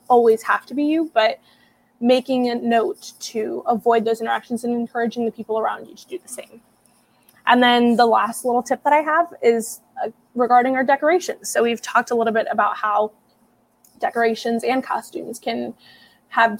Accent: American